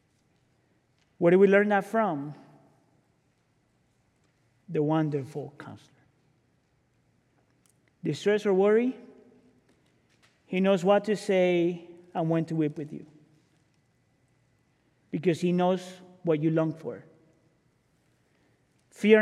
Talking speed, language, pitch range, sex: 95 wpm, English, 140-180 Hz, male